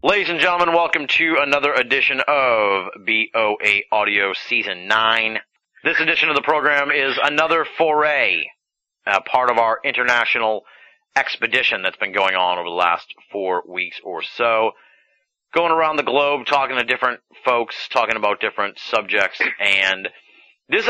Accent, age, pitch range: American, 30-49, 105-145 Hz